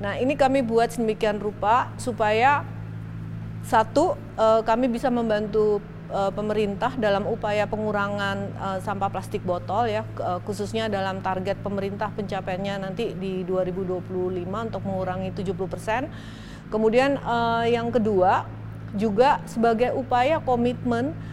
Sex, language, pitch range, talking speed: female, Indonesian, 185-235 Hz, 105 wpm